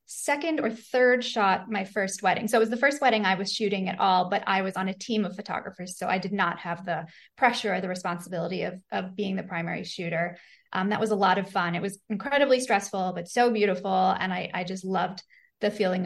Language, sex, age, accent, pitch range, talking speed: English, female, 20-39, American, 185-220 Hz, 235 wpm